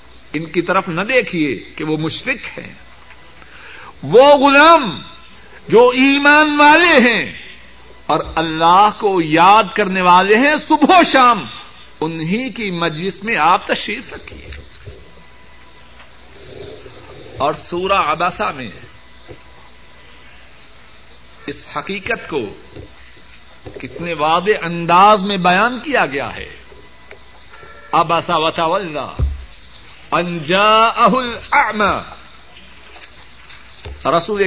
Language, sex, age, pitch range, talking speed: Urdu, male, 60-79, 160-225 Hz, 90 wpm